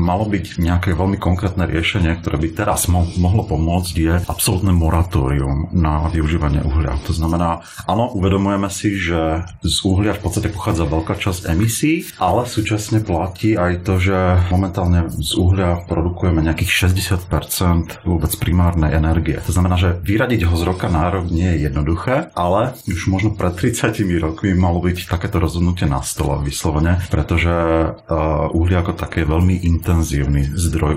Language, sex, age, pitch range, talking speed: Slovak, male, 40-59, 80-95 Hz, 155 wpm